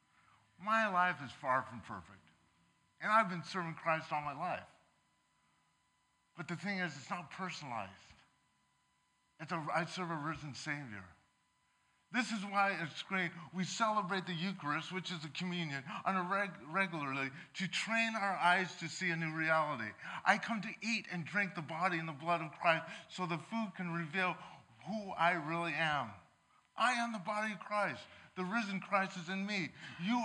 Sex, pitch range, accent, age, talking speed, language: male, 155-195 Hz, American, 50-69, 170 wpm, English